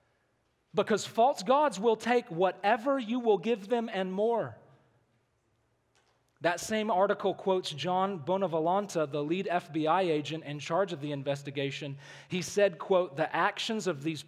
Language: English